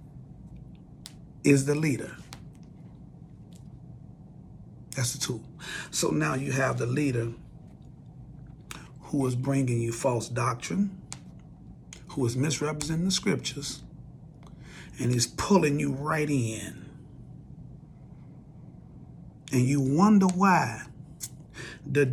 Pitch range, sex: 130-155 Hz, male